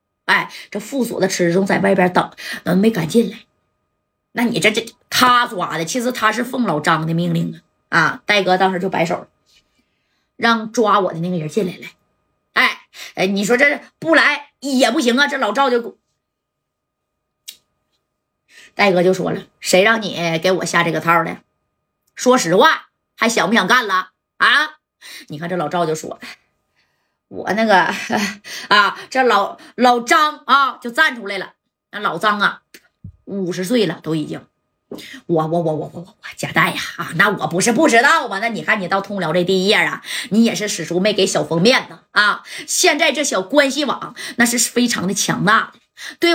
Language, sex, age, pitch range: Chinese, female, 20-39, 180-250 Hz